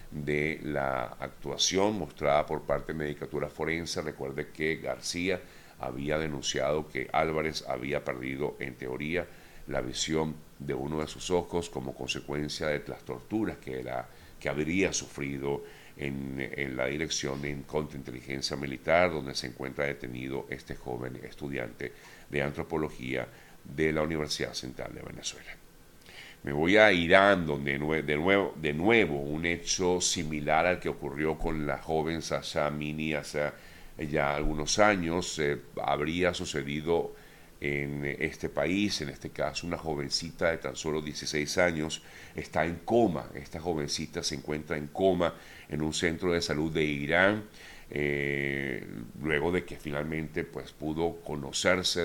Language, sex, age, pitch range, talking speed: Spanish, male, 50-69, 70-80 Hz, 140 wpm